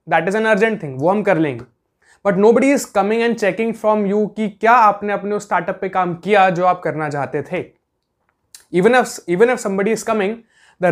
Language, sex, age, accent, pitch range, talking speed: Hindi, male, 20-39, native, 170-215 Hz, 205 wpm